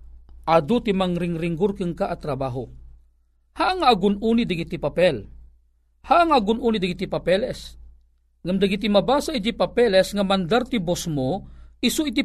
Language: Filipino